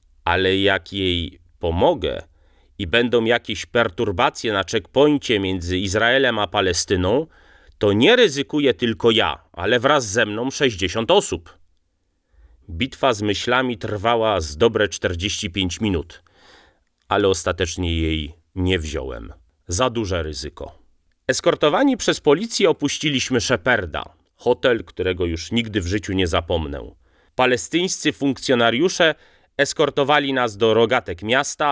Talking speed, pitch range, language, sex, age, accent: 115 wpm, 90-120 Hz, Polish, male, 30-49, native